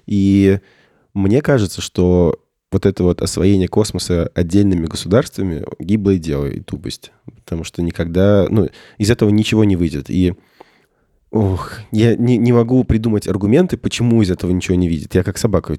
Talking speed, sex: 155 wpm, male